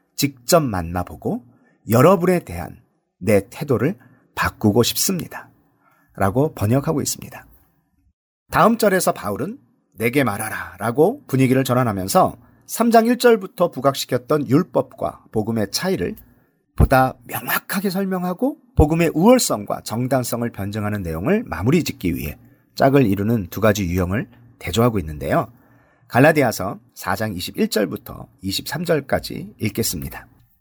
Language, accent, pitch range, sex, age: Korean, native, 110-160 Hz, male, 40-59